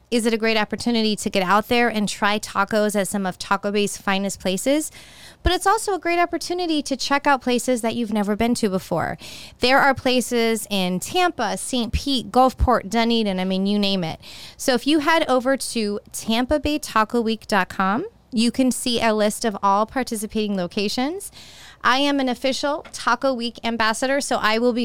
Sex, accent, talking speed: female, American, 185 wpm